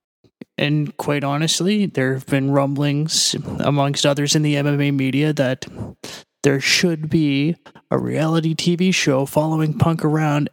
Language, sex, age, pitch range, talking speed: English, male, 20-39, 140-160 Hz, 135 wpm